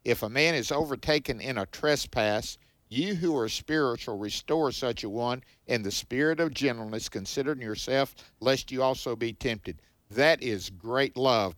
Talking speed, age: 165 wpm, 50-69